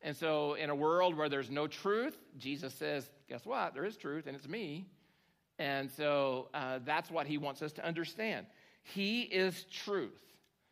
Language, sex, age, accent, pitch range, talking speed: English, male, 50-69, American, 140-190 Hz, 180 wpm